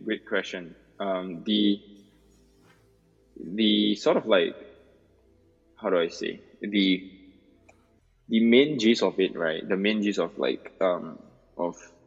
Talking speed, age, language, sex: 130 wpm, 20-39, English, male